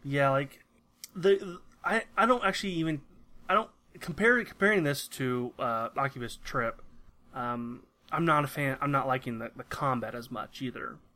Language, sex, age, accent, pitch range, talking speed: English, male, 30-49, American, 125-150 Hz, 165 wpm